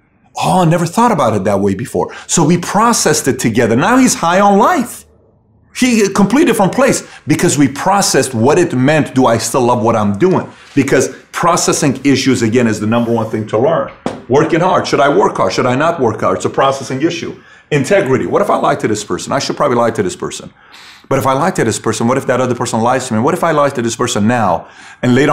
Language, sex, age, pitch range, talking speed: English, male, 30-49, 115-150 Hz, 245 wpm